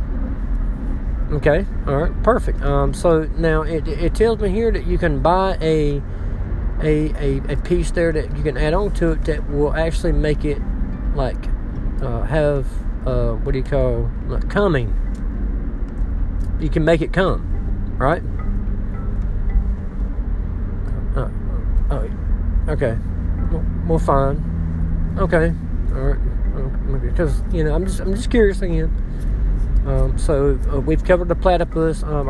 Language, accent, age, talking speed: English, American, 40-59, 140 wpm